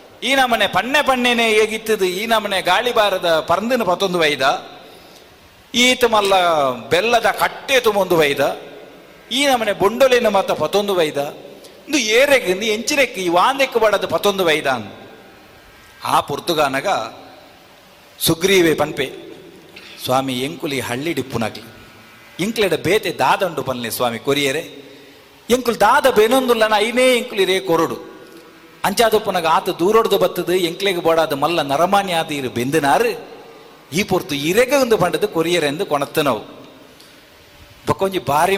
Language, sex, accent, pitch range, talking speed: Kannada, male, native, 160-215 Hz, 110 wpm